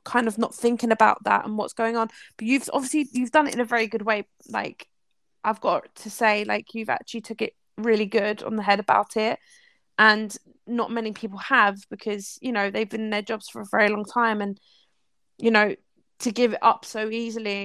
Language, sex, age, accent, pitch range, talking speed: English, female, 20-39, British, 210-230 Hz, 220 wpm